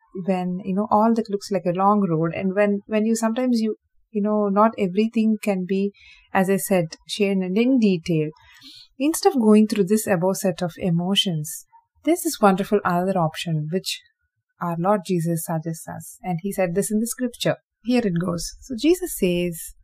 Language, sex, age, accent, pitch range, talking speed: English, female, 30-49, Indian, 180-230 Hz, 190 wpm